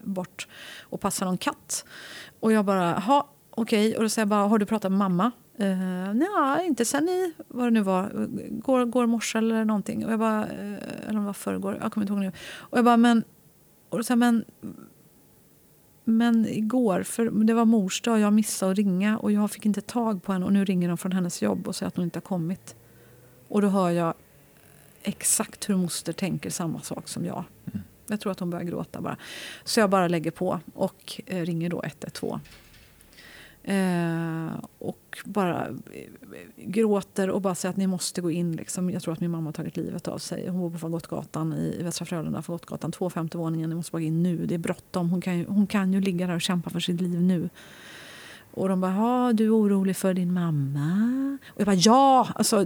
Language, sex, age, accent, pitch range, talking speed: Swedish, female, 30-49, native, 185-230 Hz, 210 wpm